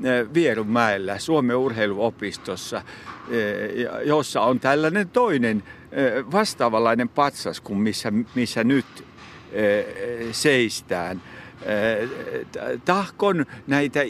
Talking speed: 70 wpm